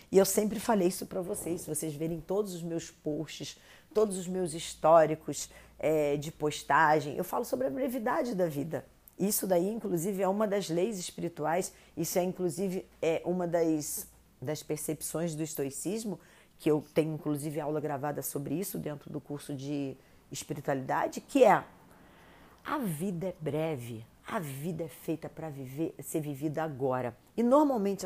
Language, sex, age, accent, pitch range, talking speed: Portuguese, female, 40-59, Brazilian, 160-240 Hz, 155 wpm